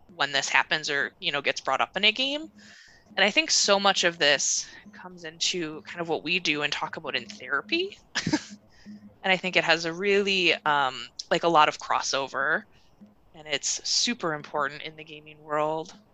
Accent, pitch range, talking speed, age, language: American, 160-210 Hz, 195 wpm, 20-39, English